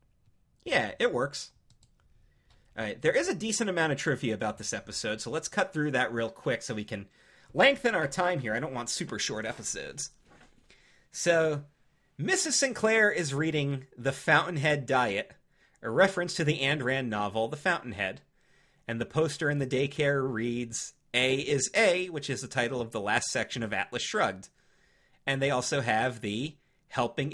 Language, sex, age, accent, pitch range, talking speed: English, male, 30-49, American, 120-160 Hz, 170 wpm